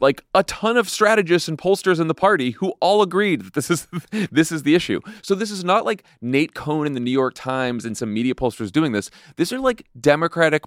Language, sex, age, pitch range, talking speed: English, male, 30-49, 120-165 Hz, 235 wpm